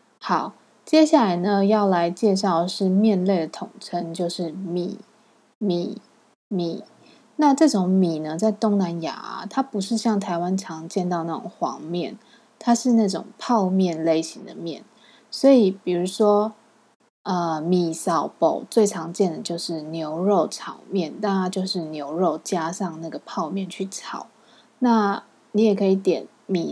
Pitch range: 180-230 Hz